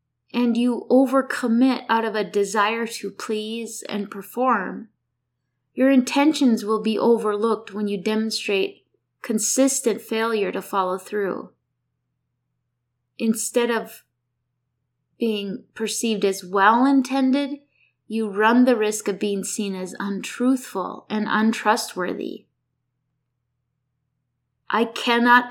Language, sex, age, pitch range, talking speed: English, female, 20-39, 195-245 Hz, 100 wpm